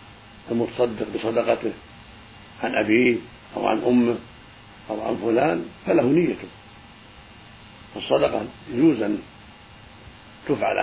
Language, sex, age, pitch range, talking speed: Arabic, male, 50-69, 105-120 Hz, 90 wpm